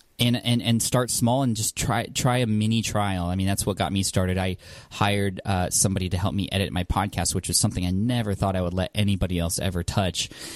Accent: American